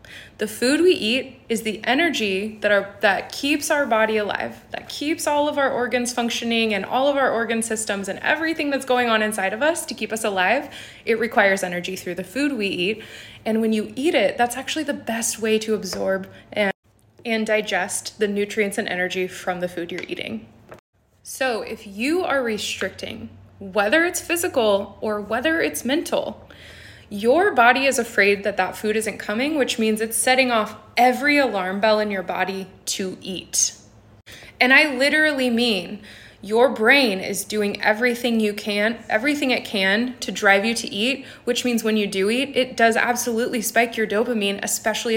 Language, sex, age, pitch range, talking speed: English, female, 20-39, 200-255 Hz, 180 wpm